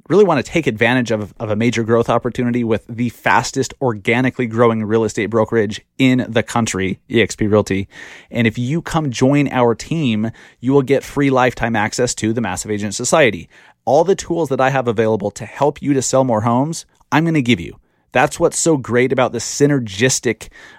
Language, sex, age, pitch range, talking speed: English, male, 30-49, 115-150 Hz, 195 wpm